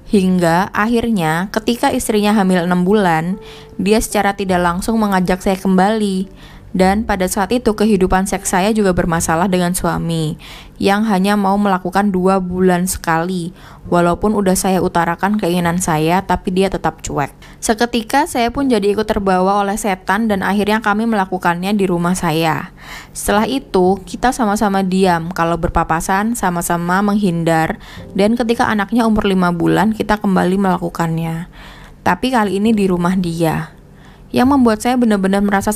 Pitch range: 180-220 Hz